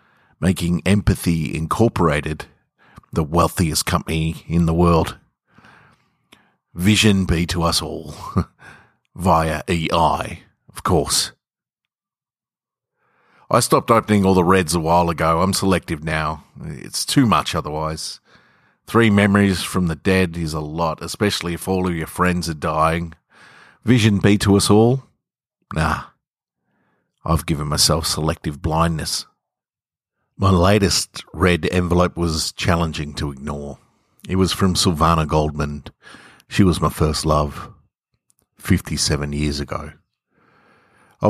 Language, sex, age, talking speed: English, male, 50-69, 120 wpm